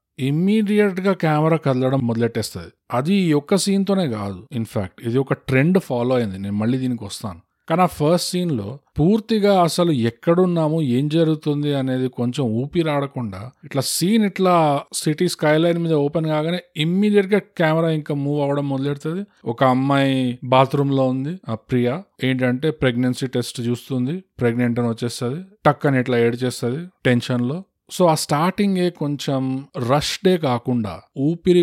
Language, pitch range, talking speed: Telugu, 120-155 Hz, 145 wpm